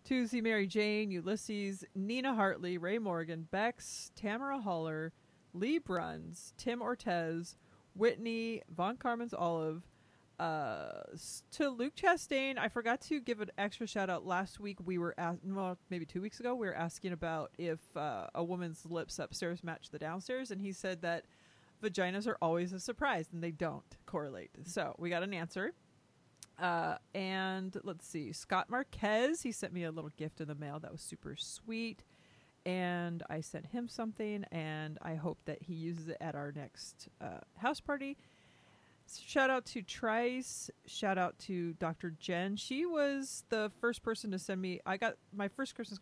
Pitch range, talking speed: 165-225 Hz, 170 wpm